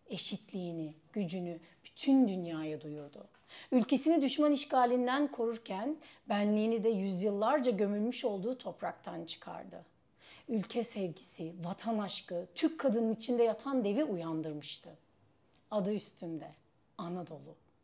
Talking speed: 100 wpm